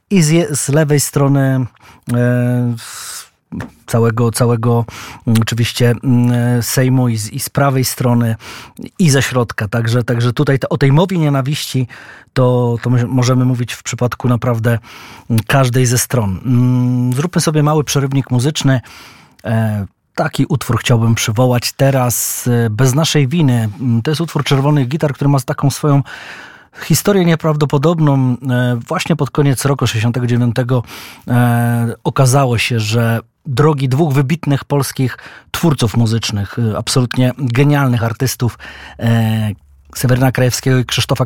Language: Polish